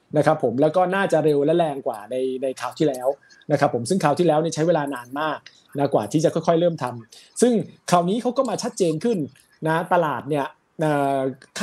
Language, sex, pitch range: Thai, male, 140-185 Hz